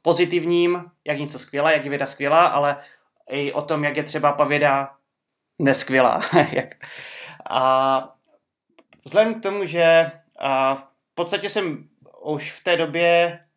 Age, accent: 20-39, native